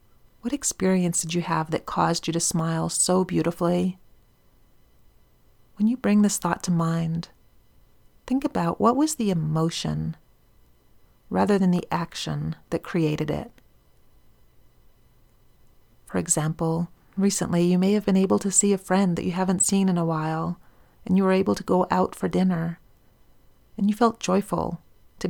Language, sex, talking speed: English, female, 155 wpm